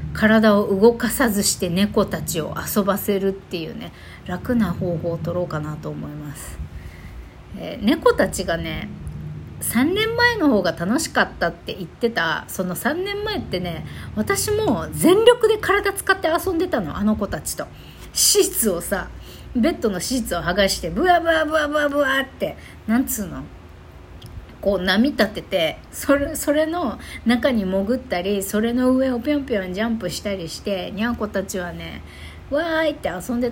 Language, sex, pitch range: Japanese, female, 180-290 Hz